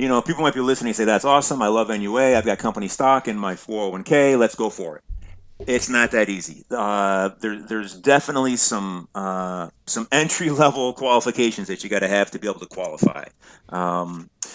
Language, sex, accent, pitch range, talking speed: English, male, American, 105-150 Hz, 195 wpm